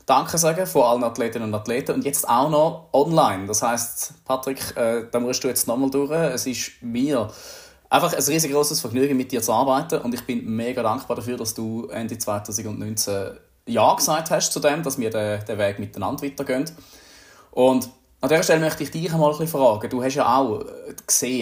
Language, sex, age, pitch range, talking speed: German, male, 20-39, 105-130 Hz, 200 wpm